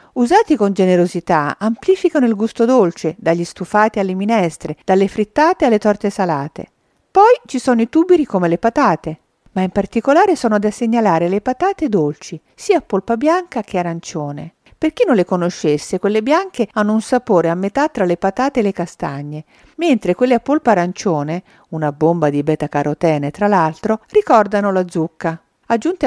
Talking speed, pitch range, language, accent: 170 wpm, 170-235 Hz, Italian, native